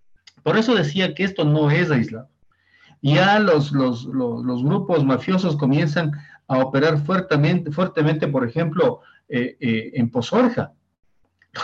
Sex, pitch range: male, 135-175 Hz